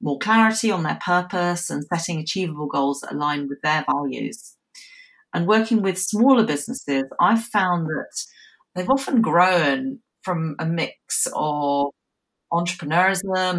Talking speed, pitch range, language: 130 wpm, 155-215 Hz, English